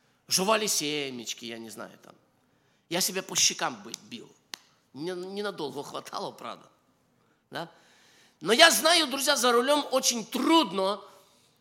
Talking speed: 125 wpm